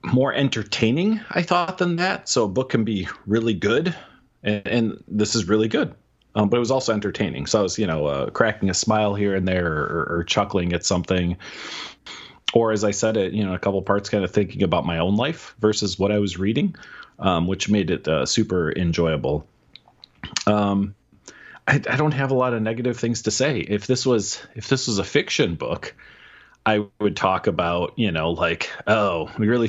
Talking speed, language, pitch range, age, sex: 205 wpm, English, 90-115 Hz, 30-49, male